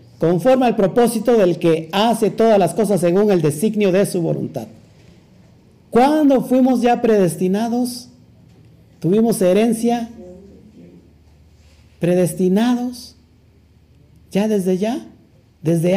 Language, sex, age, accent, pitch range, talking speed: Spanish, male, 50-69, Mexican, 130-195 Hz, 100 wpm